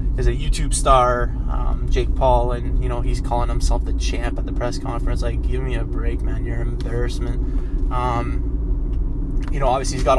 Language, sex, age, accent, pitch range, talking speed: English, male, 20-39, American, 80-130 Hz, 200 wpm